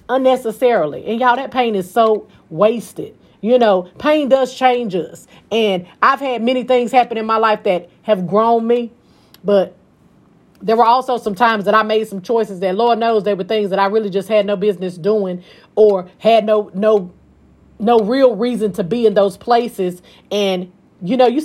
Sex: female